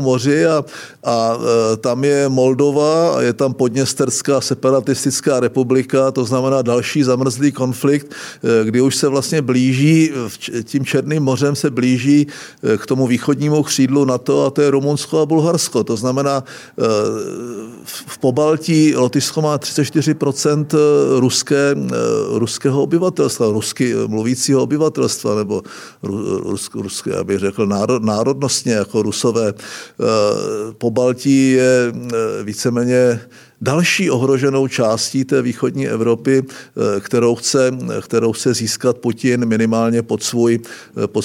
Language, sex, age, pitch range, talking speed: Czech, male, 50-69, 120-145 Hz, 120 wpm